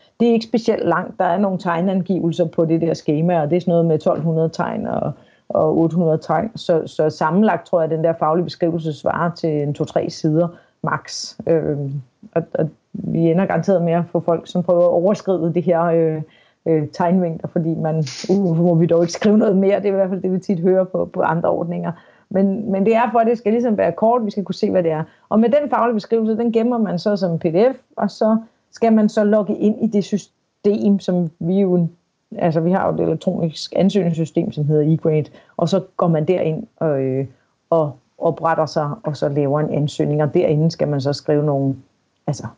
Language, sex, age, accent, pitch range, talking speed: Danish, female, 40-59, native, 155-190 Hz, 220 wpm